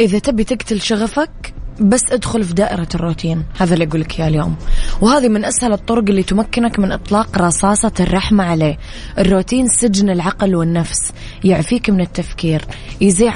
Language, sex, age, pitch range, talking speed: English, female, 20-39, 170-205 Hz, 150 wpm